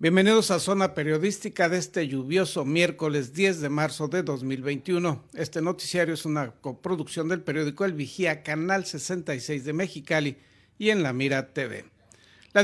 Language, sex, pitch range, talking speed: Spanish, male, 145-180 Hz, 150 wpm